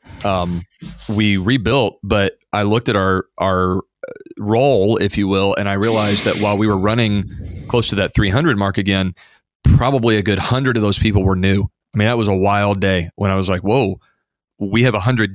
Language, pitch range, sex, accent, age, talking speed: English, 95-115 Hz, male, American, 30-49, 205 wpm